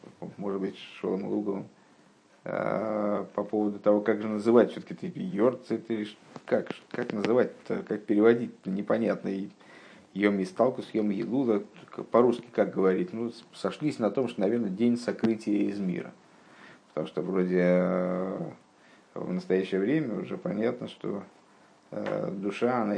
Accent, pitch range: native, 95-110 Hz